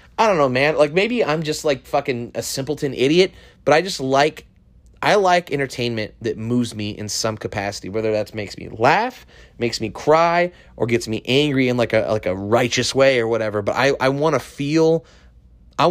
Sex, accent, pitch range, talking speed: male, American, 110-145 Hz, 200 wpm